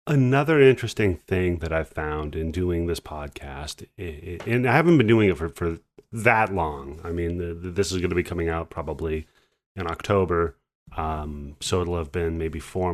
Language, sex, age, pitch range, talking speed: English, male, 30-49, 85-125 Hz, 180 wpm